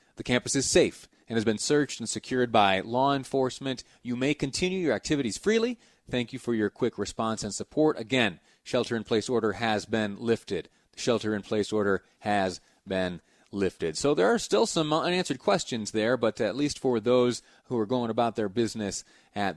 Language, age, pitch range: English, 30-49, 100-125 Hz